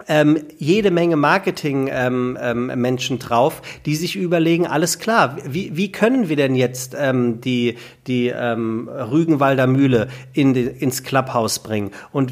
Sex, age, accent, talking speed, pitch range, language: male, 40-59, German, 150 wpm, 130-170 Hz, German